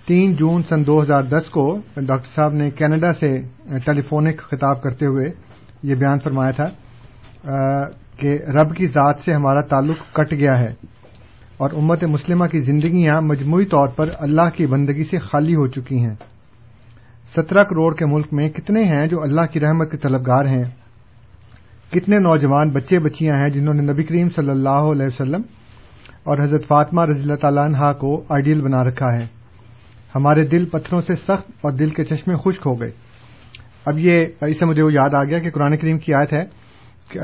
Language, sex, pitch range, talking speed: Urdu, male, 130-165 Hz, 180 wpm